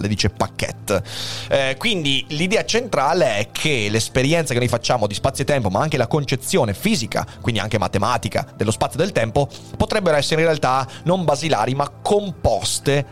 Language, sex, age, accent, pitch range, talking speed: Italian, male, 30-49, native, 110-145 Hz, 170 wpm